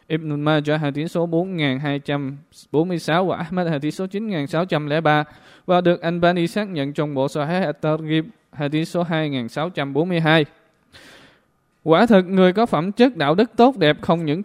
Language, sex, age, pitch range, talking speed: Vietnamese, male, 20-39, 145-180 Hz, 160 wpm